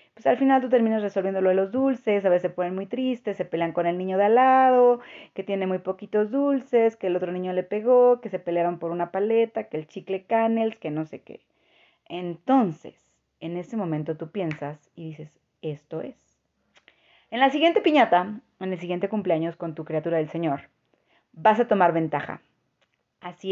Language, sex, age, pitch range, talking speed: Spanish, female, 30-49, 170-230 Hz, 195 wpm